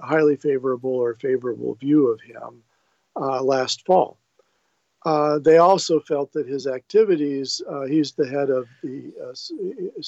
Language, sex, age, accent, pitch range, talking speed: English, male, 50-69, American, 130-205 Hz, 145 wpm